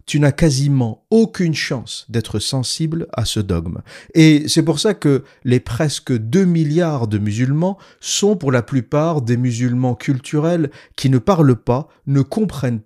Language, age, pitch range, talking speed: French, 50-69, 120-160 Hz, 160 wpm